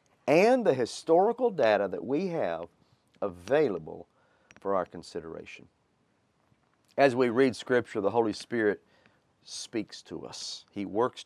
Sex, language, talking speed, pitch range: male, English, 125 wpm, 95-130 Hz